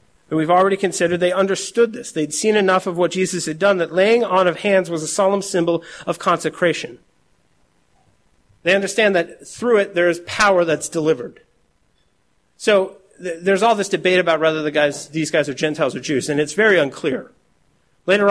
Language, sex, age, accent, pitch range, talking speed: English, male, 40-59, American, 160-195 Hz, 175 wpm